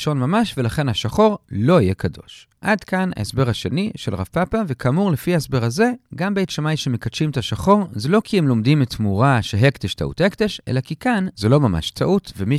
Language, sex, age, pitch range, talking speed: Hebrew, male, 40-59, 110-185 Hz, 195 wpm